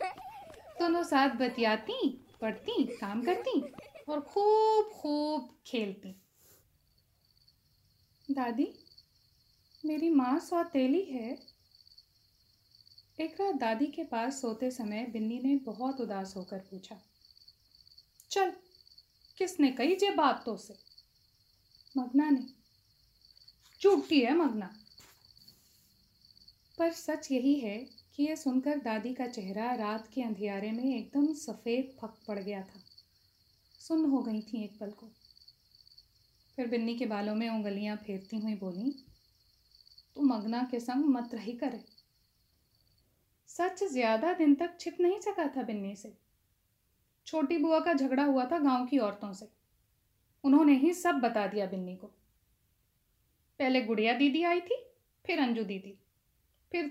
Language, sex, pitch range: Hindi, female, 210-300 Hz